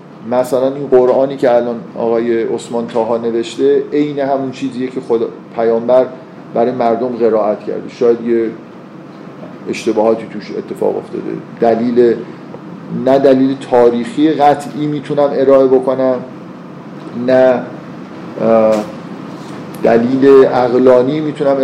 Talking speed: 100 wpm